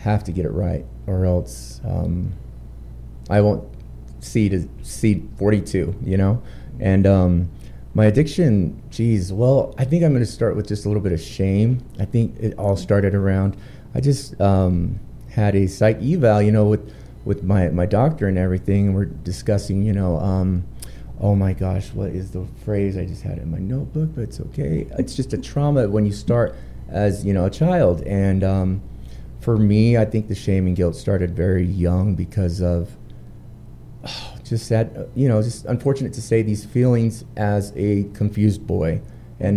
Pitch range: 95-115 Hz